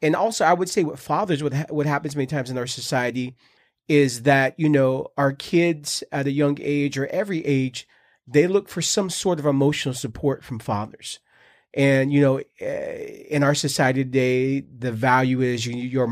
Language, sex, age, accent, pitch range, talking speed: English, male, 30-49, American, 135-160 Hz, 180 wpm